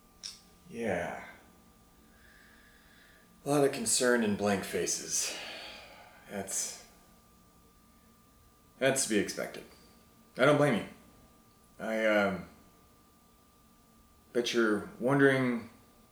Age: 30-49